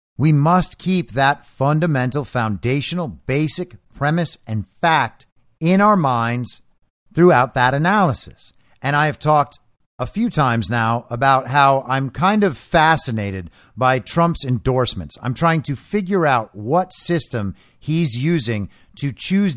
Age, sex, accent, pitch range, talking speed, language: 50-69, male, American, 120-165 Hz, 135 wpm, English